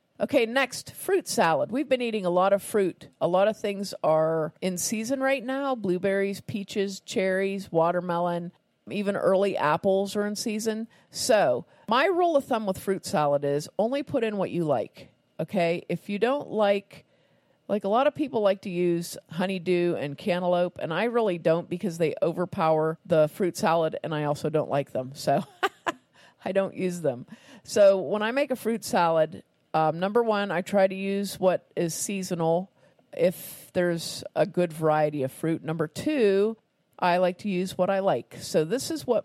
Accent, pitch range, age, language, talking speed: American, 170-210 Hz, 40-59, English, 180 wpm